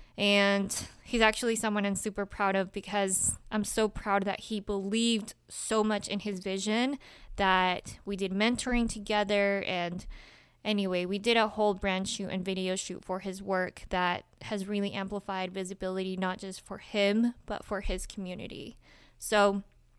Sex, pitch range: female, 195-225 Hz